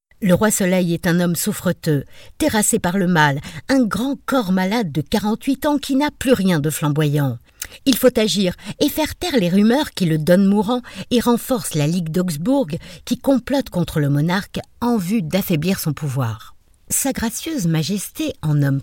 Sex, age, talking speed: female, 60-79, 180 wpm